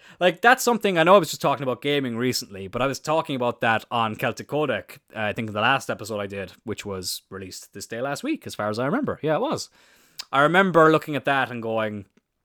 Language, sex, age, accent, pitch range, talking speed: English, male, 20-39, Irish, 110-150 Hz, 250 wpm